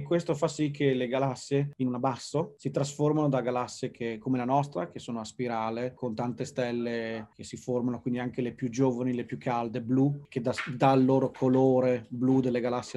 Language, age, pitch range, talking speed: Italian, 30-49, 120-140 Hz, 205 wpm